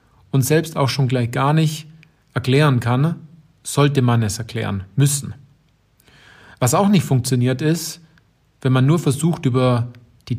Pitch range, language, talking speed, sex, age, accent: 120-150 Hz, German, 145 wpm, male, 40-59, German